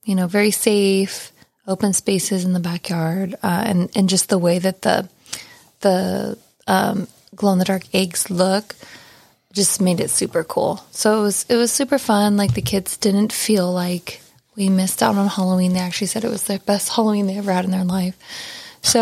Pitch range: 185-210 Hz